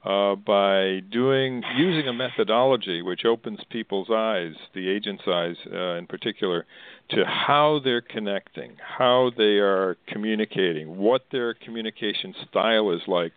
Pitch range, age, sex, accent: 100-115 Hz, 50-69, male, American